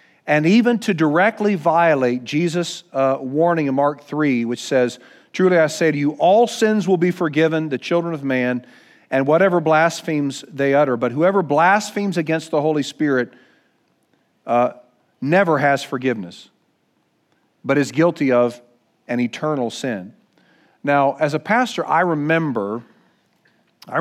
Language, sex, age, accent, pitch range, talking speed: English, male, 50-69, American, 135-180 Hz, 140 wpm